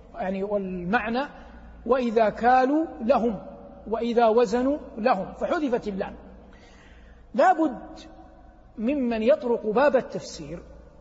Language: Arabic